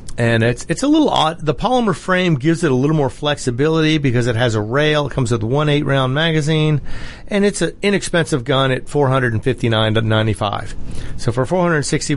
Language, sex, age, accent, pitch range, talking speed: English, male, 40-59, American, 115-145 Hz, 185 wpm